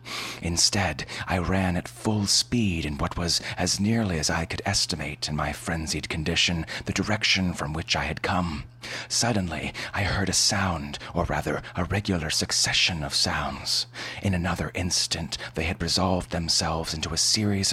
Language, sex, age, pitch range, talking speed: English, male, 30-49, 85-105 Hz, 160 wpm